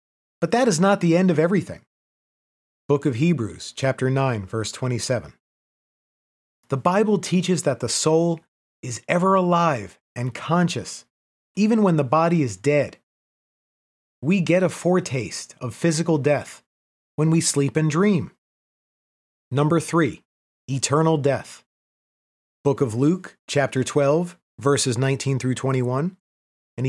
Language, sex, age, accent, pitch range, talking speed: English, male, 30-49, American, 135-170 Hz, 125 wpm